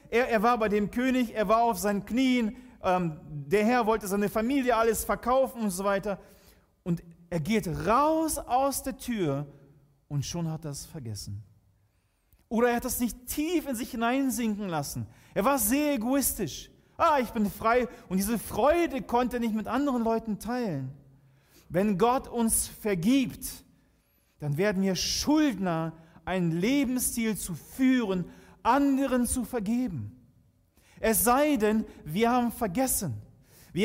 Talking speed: 150 wpm